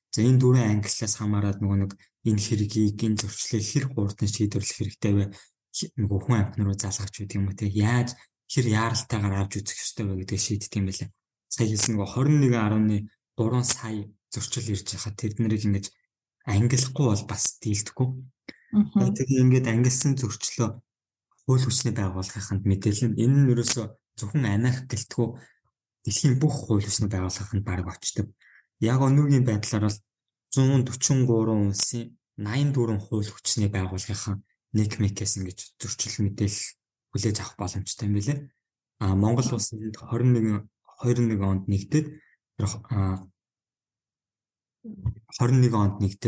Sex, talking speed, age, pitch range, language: male, 120 wpm, 20-39, 100-125 Hz, English